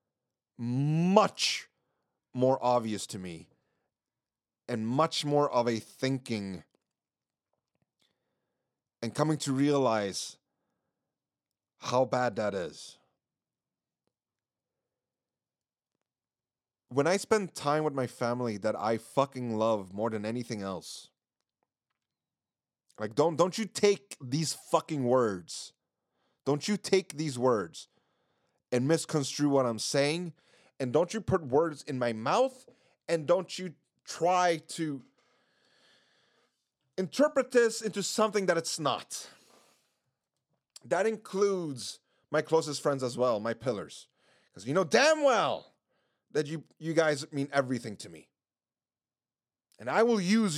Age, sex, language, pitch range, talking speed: 30-49, male, English, 120-170 Hz, 115 wpm